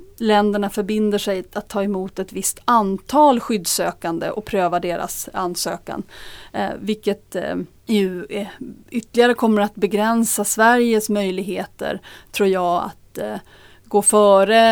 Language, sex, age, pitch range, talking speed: Swedish, female, 30-49, 185-215 Hz, 120 wpm